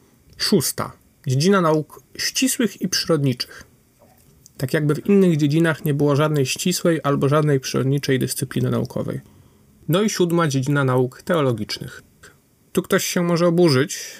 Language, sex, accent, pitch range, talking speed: Polish, male, native, 130-170 Hz, 130 wpm